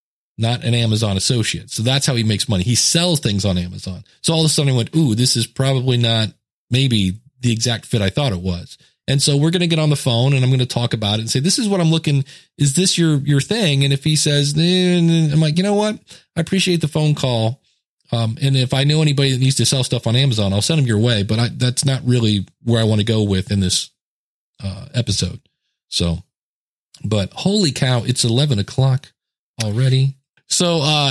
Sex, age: male, 40-59